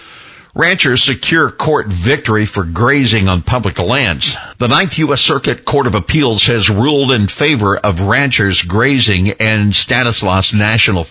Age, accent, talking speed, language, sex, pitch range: 60-79, American, 140 wpm, English, male, 95-120 Hz